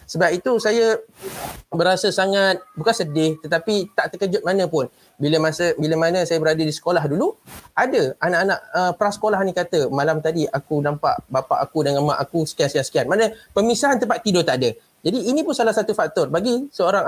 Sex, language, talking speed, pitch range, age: male, Malay, 180 wpm, 160-215 Hz, 30-49